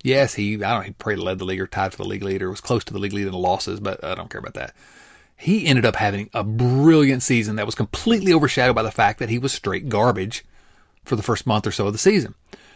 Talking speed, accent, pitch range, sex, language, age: 280 wpm, American, 95-135 Hz, male, English, 40-59